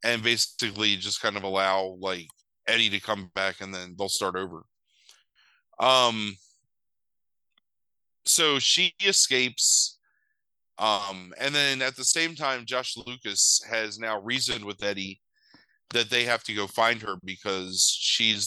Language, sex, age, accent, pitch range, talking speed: English, male, 30-49, American, 100-125 Hz, 140 wpm